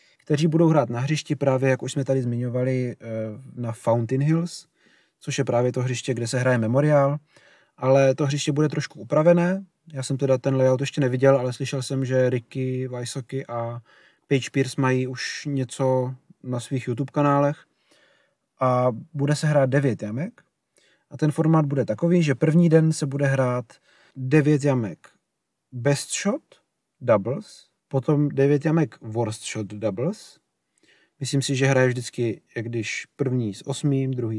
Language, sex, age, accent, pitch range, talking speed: Czech, male, 30-49, native, 120-145 Hz, 160 wpm